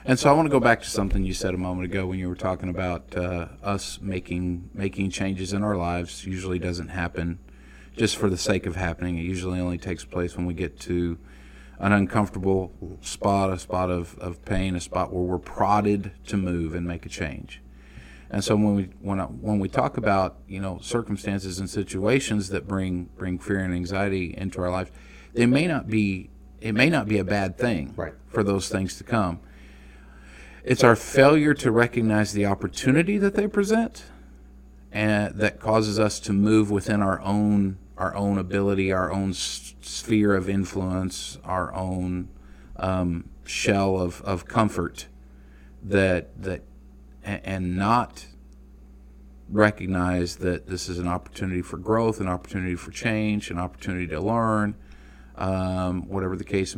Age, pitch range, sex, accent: 40-59, 85-100 Hz, male, American